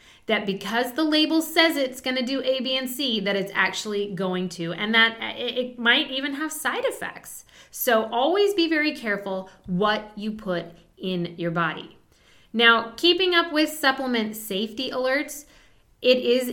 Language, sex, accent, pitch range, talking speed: English, female, American, 210-285 Hz, 165 wpm